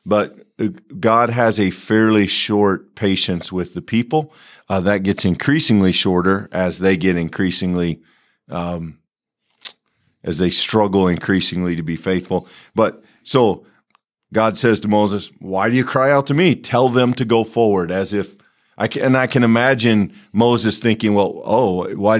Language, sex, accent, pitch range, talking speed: English, male, American, 95-115 Hz, 155 wpm